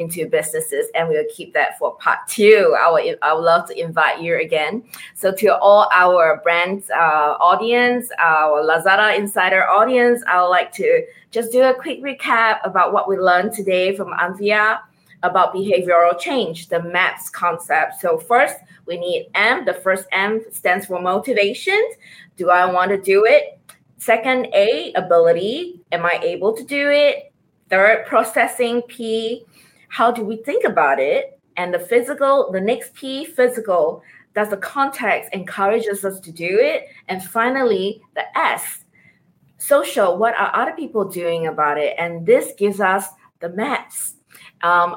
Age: 20-39